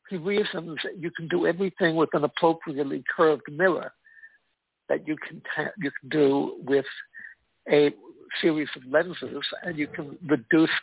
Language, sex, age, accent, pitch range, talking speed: English, male, 60-79, American, 150-215 Hz, 155 wpm